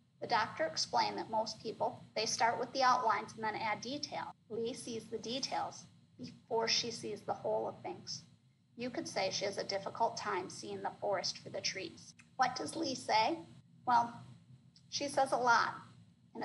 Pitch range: 220-270 Hz